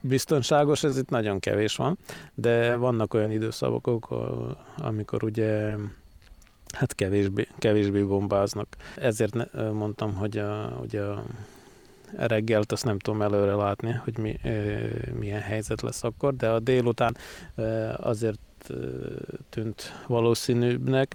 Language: Hungarian